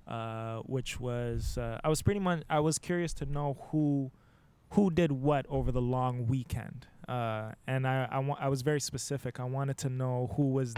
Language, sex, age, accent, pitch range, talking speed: English, male, 20-39, American, 120-140 Hz, 190 wpm